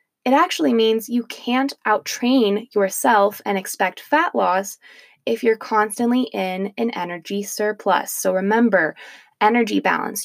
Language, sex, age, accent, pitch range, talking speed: English, female, 20-39, American, 195-250 Hz, 130 wpm